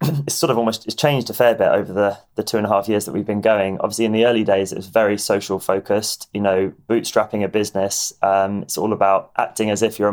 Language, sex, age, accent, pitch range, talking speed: English, male, 20-39, British, 100-115 Hz, 260 wpm